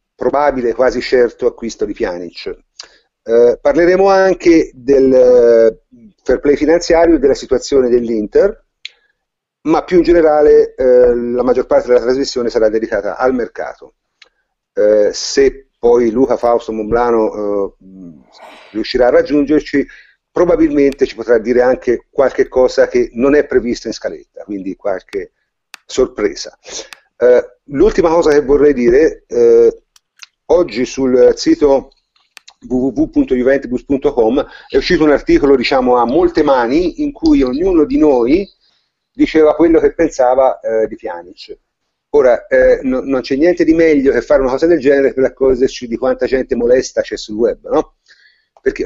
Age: 50-69